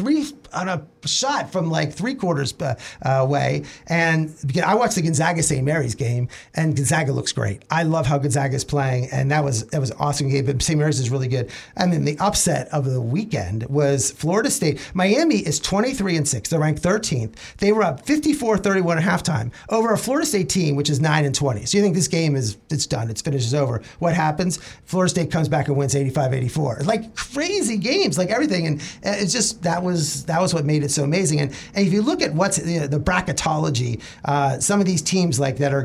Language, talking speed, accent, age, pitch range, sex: English, 220 wpm, American, 40-59, 145-195 Hz, male